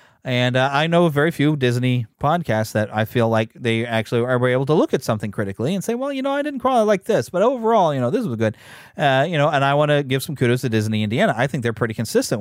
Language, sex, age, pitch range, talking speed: English, male, 30-49, 115-175 Hz, 275 wpm